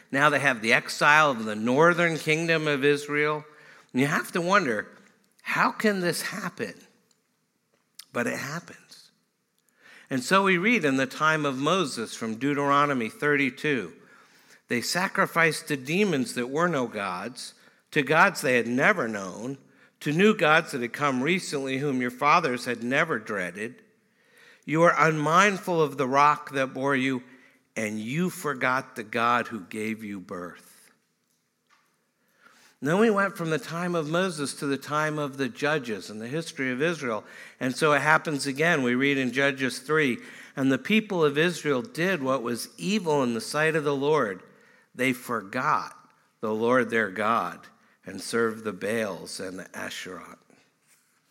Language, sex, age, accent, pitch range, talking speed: English, male, 50-69, American, 130-170 Hz, 160 wpm